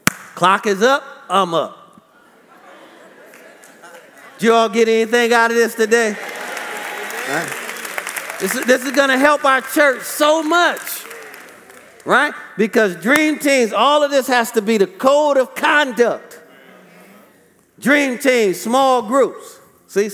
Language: English